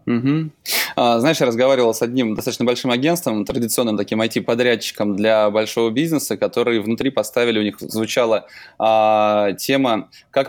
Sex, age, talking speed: male, 20-39, 130 wpm